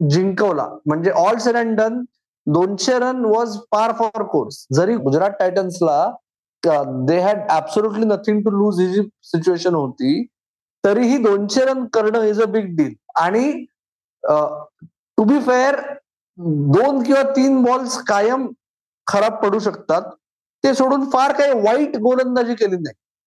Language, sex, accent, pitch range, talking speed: Marathi, male, native, 180-240 Hz, 130 wpm